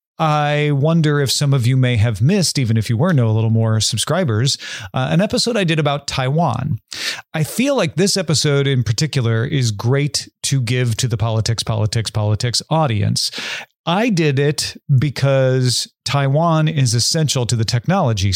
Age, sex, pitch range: 40-59, male, 115-155 Hz